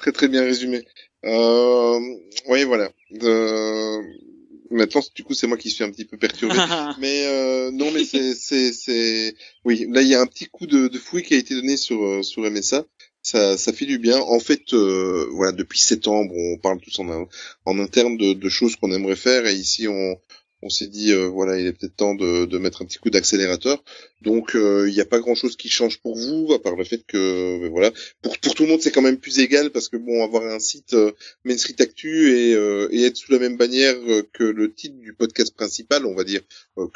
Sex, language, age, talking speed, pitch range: male, French, 20-39, 225 wpm, 100-130 Hz